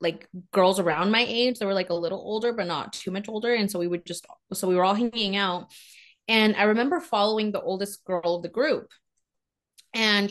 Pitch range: 180-230 Hz